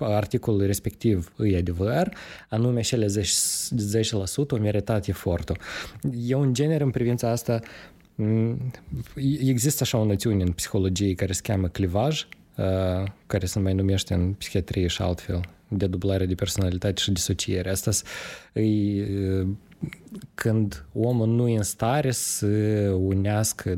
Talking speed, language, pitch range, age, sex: 125 wpm, Romanian, 95-120 Hz, 20-39, male